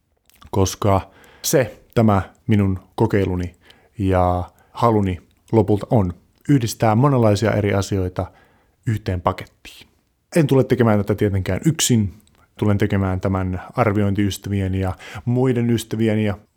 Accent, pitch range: native, 95-120 Hz